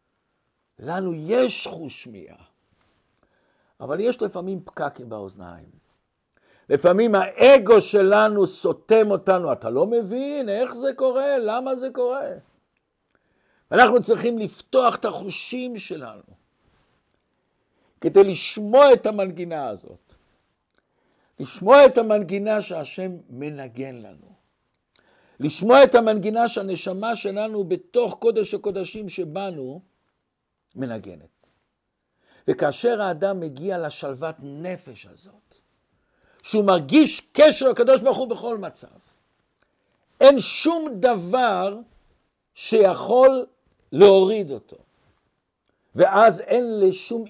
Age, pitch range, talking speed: 50-69, 185-245 Hz, 95 wpm